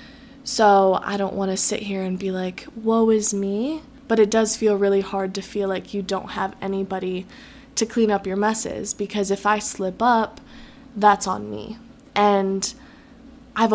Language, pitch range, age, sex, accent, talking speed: English, 195-230 Hz, 20-39, female, American, 180 wpm